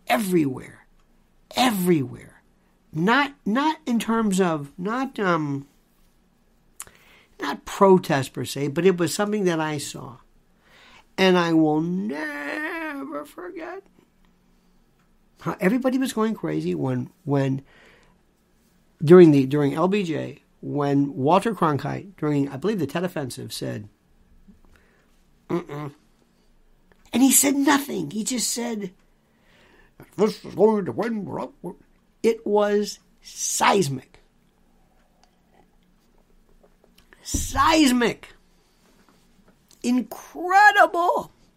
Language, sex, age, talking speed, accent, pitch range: English, male, 50-69, 90 wpm, American, 145-230 Hz